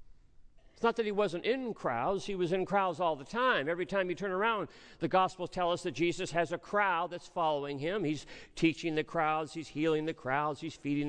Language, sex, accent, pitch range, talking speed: English, male, American, 140-210 Hz, 220 wpm